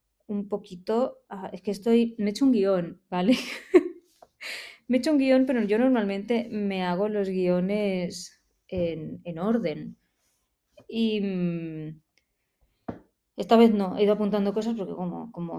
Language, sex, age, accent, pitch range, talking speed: Spanish, female, 20-39, Spanish, 185-225 Hz, 145 wpm